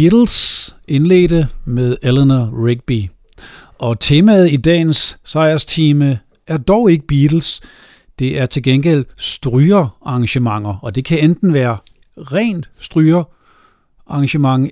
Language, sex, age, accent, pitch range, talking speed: Danish, male, 60-79, native, 125-155 Hz, 105 wpm